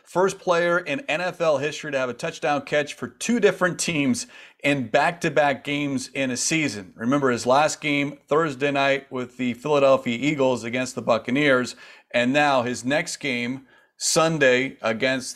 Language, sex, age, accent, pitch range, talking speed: English, male, 40-59, American, 125-150 Hz, 155 wpm